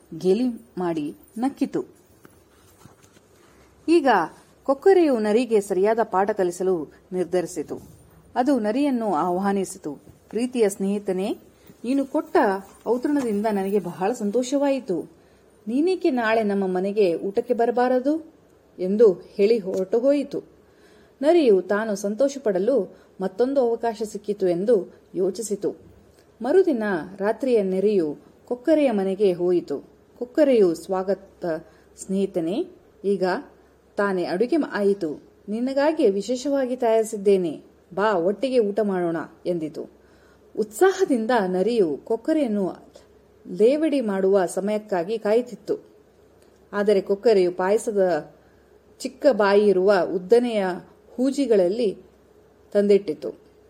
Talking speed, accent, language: 85 wpm, Indian, English